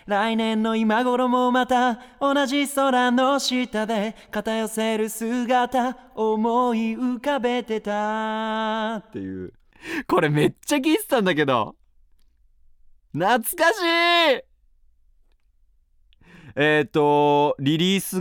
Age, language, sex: 30-49, Japanese, male